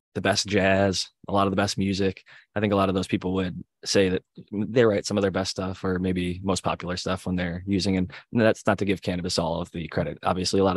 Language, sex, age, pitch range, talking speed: English, male, 20-39, 90-100 Hz, 260 wpm